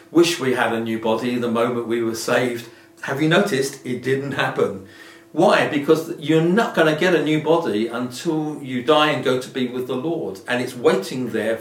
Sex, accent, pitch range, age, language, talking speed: male, British, 125-165 Hz, 40-59, English, 210 wpm